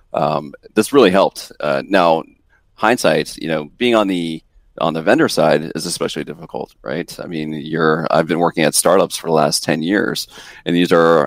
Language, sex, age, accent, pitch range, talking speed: English, male, 30-49, American, 80-90 Hz, 190 wpm